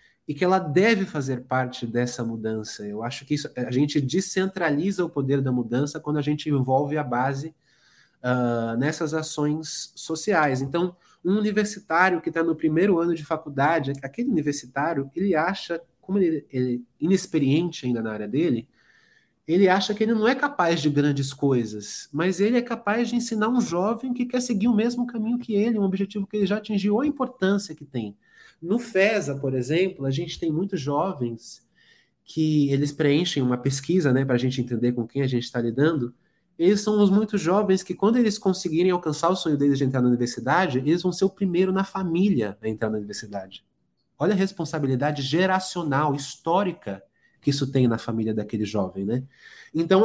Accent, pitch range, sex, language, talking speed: Brazilian, 135-190 Hz, male, Portuguese, 185 wpm